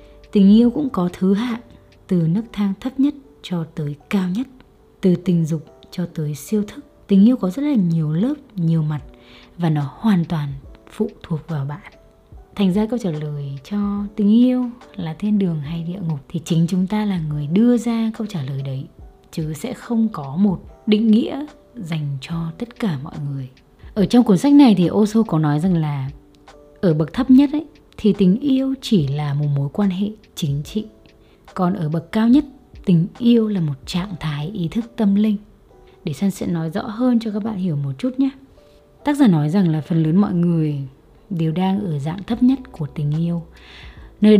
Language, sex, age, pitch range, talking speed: Vietnamese, female, 20-39, 155-215 Hz, 205 wpm